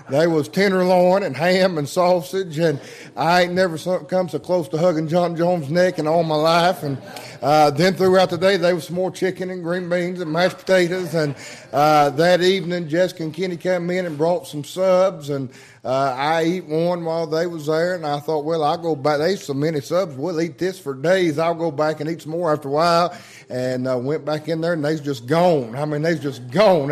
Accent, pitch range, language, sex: American, 135-170 Hz, English, male